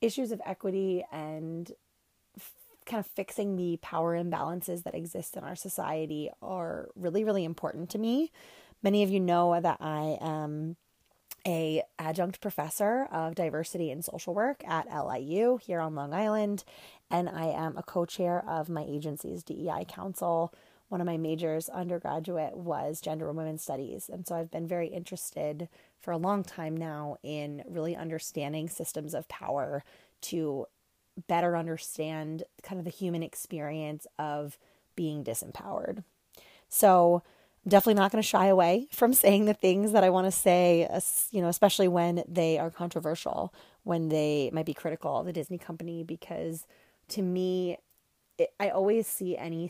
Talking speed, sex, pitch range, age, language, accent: 155 wpm, female, 160-190 Hz, 20-39, English, American